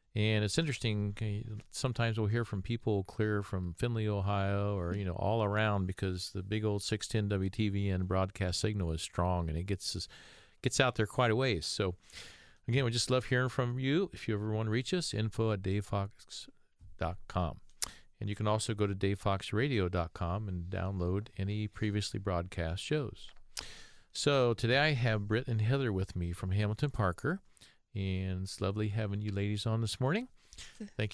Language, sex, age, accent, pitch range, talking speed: English, male, 50-69, American, 95-115 Hz, 170 wpm